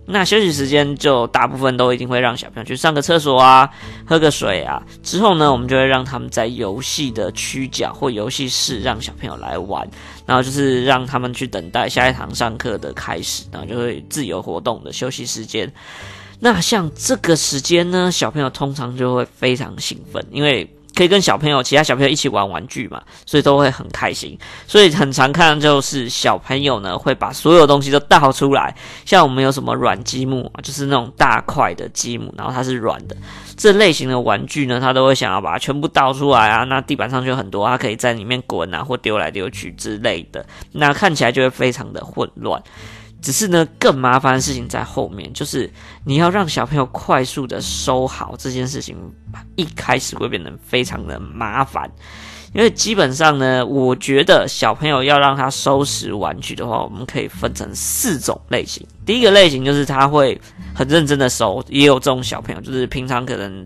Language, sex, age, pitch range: Chinese, female, 20-39, 125-145 Hz